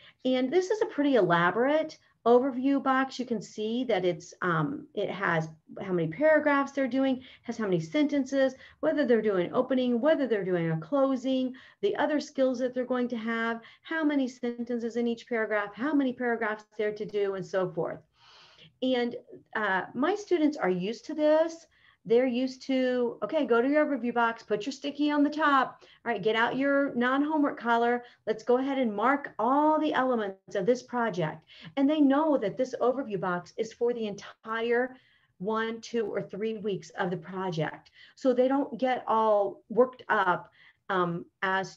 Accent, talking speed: American, 180 wpm